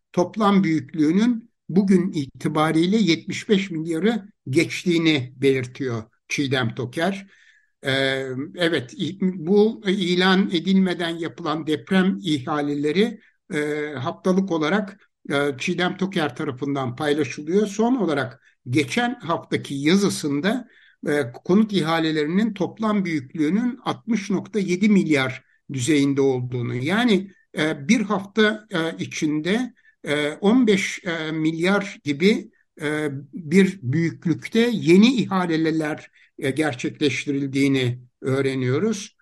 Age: 60-79